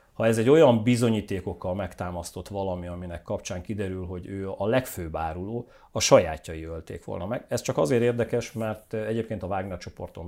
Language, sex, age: Hungarian, male, 40-59